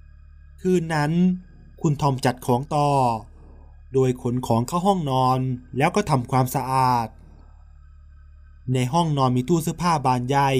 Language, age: Thai, 20-39